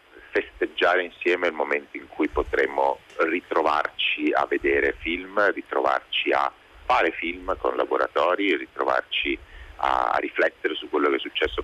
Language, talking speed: Italian, 135 wpm